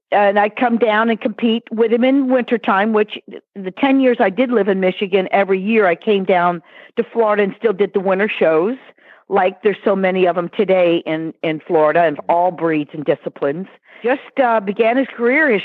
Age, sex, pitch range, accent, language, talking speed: 50-69, female, 190-245 Hz, American, English, 205 wpm